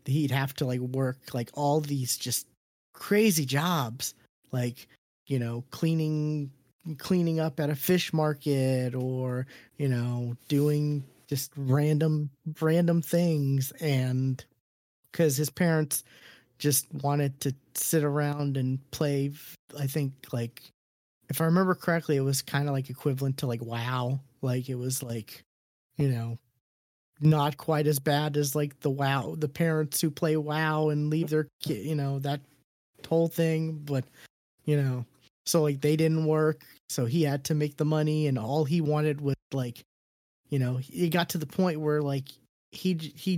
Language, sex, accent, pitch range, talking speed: English, male, American, 130-155 Hz, 160 wpm